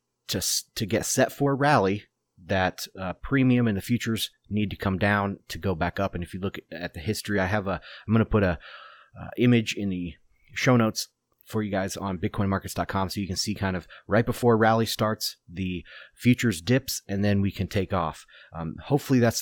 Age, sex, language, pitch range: 30-49, male, English, 95-115 Hz